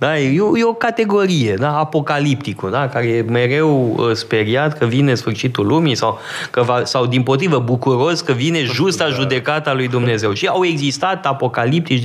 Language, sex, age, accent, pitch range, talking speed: Romanian, male, 20-39, native, 120-160 Hz, 160 wpm